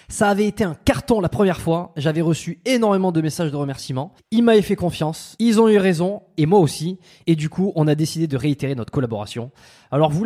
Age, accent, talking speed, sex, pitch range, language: 20-39, French, 220 wpm, male, 155-205 Hz, French